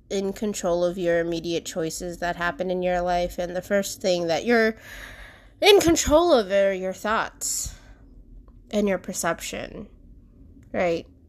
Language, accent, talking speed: English, American, 145 wpm